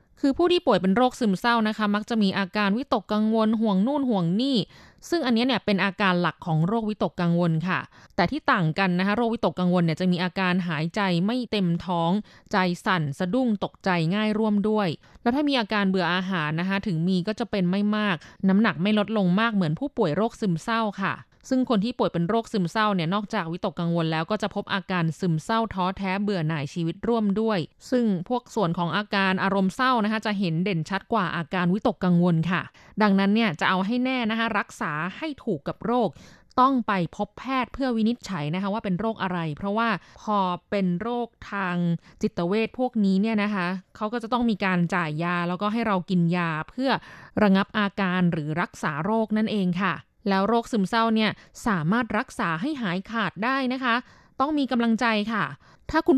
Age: 20-39